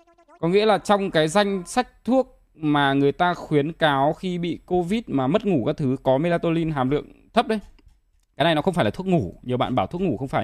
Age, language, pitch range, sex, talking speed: 20-39, Vietnamese, 125-170 Hz, male, 240 wpm